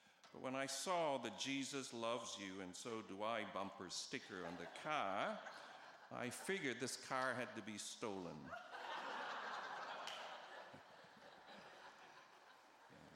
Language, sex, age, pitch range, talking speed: English, male, 50-69, 105-135 Hz, 120 wpm